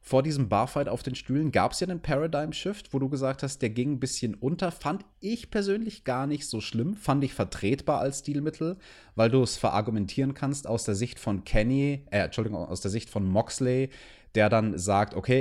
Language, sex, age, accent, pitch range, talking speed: German, male, 30-49, German, 100-135 Hz, 205 wpm